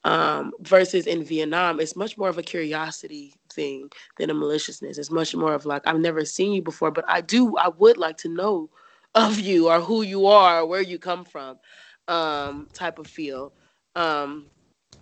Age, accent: 20-39, American